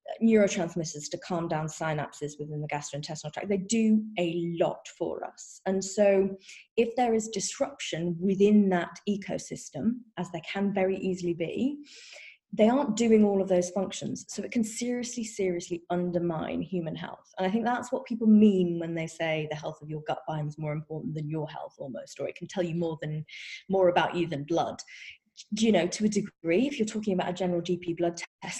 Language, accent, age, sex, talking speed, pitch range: English, British, 20-39, female, 195 wpm, 175-225 Hz